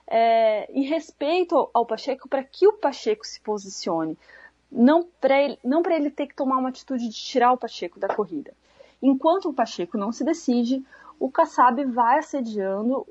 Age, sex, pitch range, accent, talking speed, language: 30-49, female, 210-275 Hz, Brazilian, 165 wpm, Portuguese